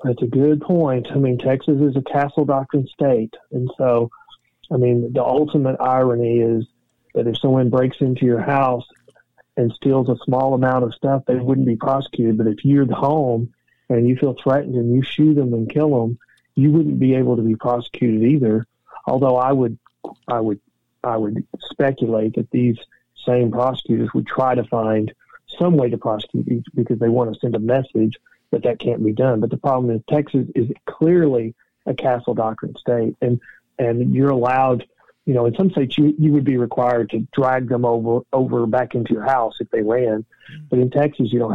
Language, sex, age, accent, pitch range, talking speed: English, male, 40-59, American, 115-135 Hz, 195 wpm